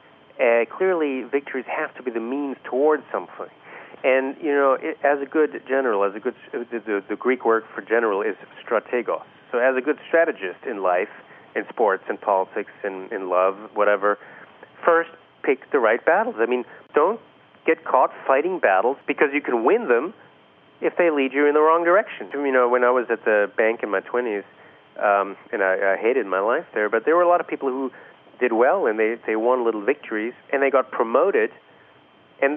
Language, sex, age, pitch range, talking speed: English, male, 40-59, 110-145 Hz, 205 wpm